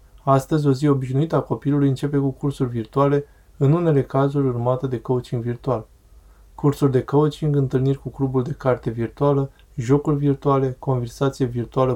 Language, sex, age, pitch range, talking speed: Romanian, male, 20-39, 125-140 Hz, 150 wpm